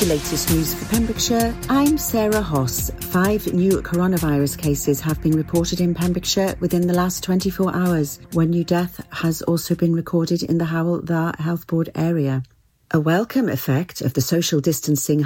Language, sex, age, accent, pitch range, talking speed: English, female, 40-59, British, 145-190 Hz, 165 wpm